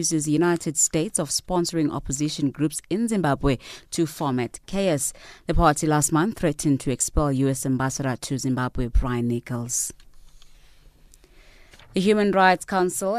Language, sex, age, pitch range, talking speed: English, female, 20-39, 135-175 Hz, 130 wpm